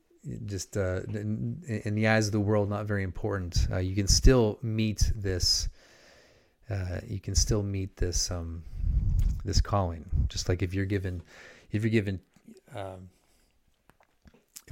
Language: English